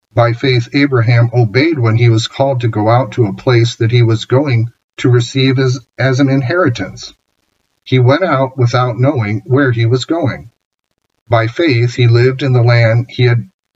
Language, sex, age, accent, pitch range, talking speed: English, male, 50-69, American, 115-130 Hz, 185 wpm